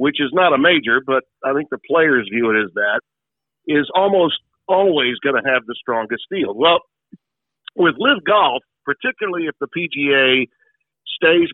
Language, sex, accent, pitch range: English, male, American, 120-160 Hz